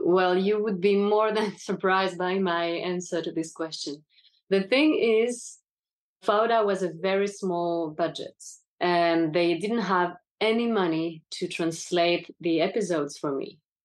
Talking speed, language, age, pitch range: 145 wpm, English, 20-39, 165-195 Hz